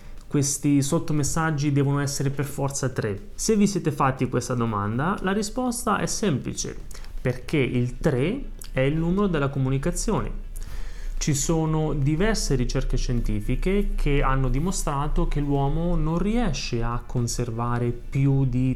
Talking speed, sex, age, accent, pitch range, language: 130 wpm, male, 30-49, native, 120-150 Hz, Italian